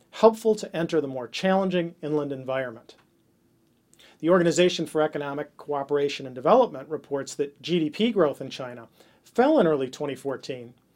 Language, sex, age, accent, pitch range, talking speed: English, male, 40-59, American, 140-180 Hz, 135 wpm